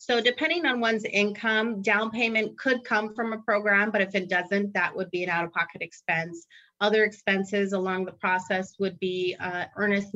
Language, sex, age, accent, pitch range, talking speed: English, female, 30-49, American, 175-210 Hz, 185 wpm